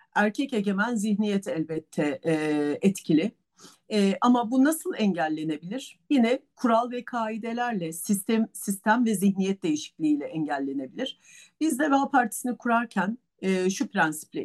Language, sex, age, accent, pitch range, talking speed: Turkish, female, 50-69, native, 175-250 Hz, 115 wpm